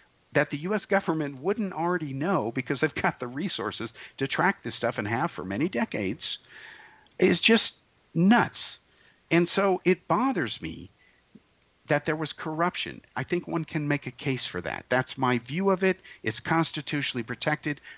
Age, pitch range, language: 50-69, 105-155 Hz, English